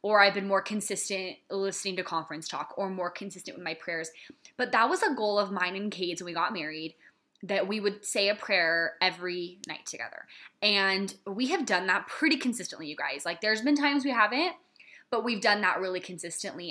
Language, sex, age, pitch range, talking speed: English, female, 20-39, 185-255 Hz, 210 wpm